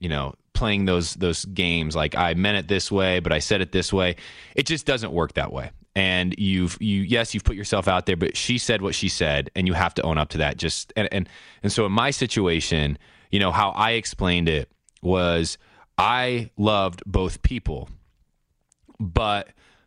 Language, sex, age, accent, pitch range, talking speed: English, male, 20-39, American, 90-120 Hz, 200 wpm